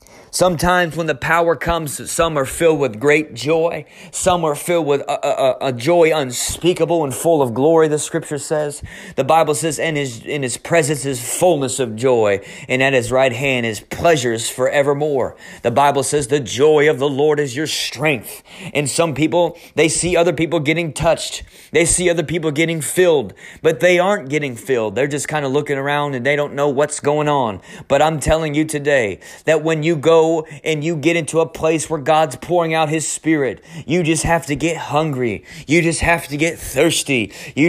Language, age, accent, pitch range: English, 30-49, American, 140-165 Hz